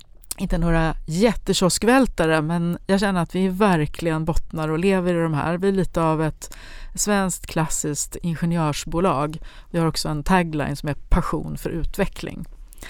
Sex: female